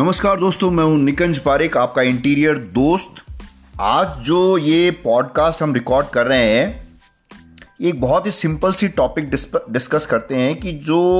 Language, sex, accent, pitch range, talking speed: Hindi, male, native, 105-150 Hz, 155 wpm